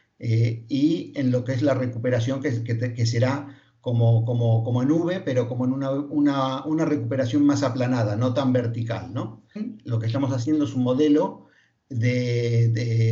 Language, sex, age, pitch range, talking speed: Spanish, male, 50-69, 120-150 Hz, 180 wpm